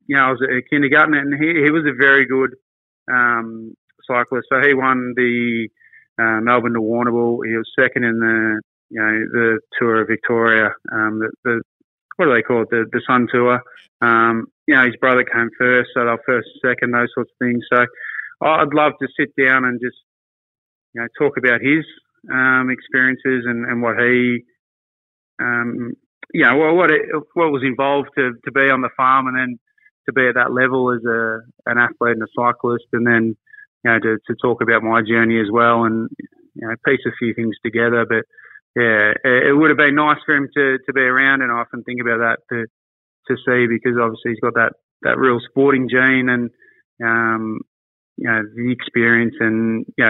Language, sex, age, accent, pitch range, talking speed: English, male, 20-39, Australian, 115-130 Hz, 200 wpm